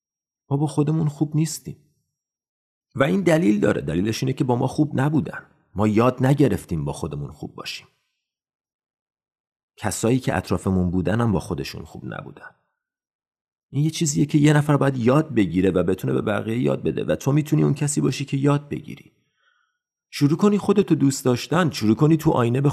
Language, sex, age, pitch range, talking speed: Persian, male, 40-59, 110-150 Hz, 175 wpm